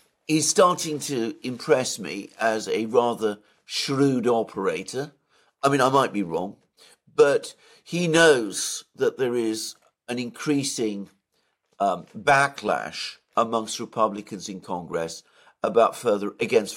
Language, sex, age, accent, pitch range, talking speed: English, male, 50-69, British, 110-165 Hz, 120 wpm